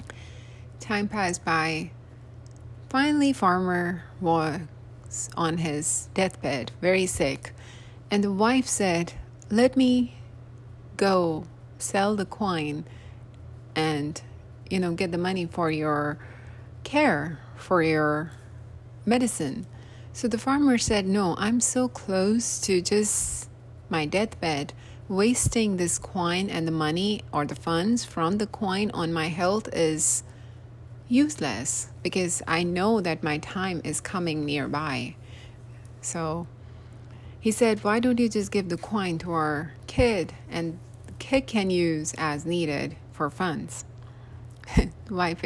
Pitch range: 120-180 Hz